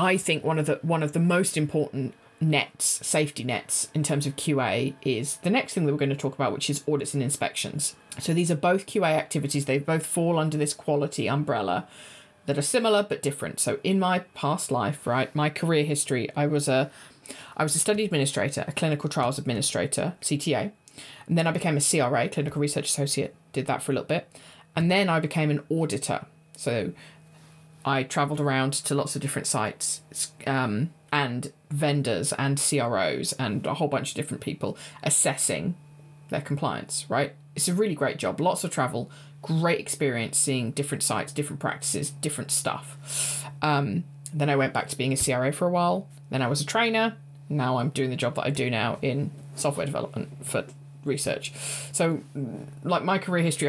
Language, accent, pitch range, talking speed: English, British, 140-160 Hz, 190 wpm